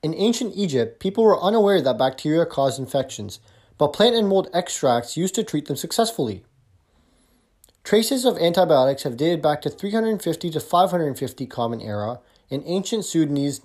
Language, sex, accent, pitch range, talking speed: English, male, American, 125-185 Hz, 150 wpm